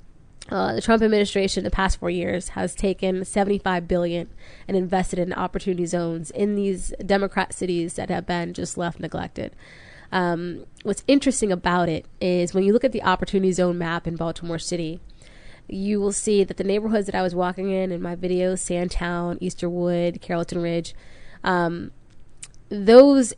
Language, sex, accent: English, female, American